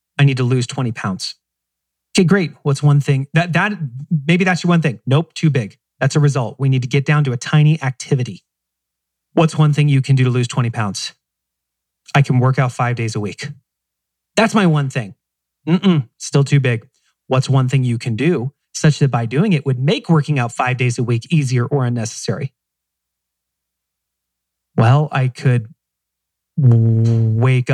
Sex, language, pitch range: male, English, 115-145 Hz